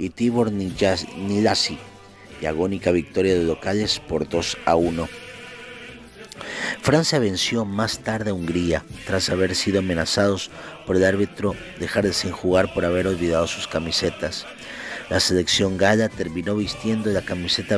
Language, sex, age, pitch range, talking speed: Spanish, male, 40-59, 90-110 Hz, 140 wpm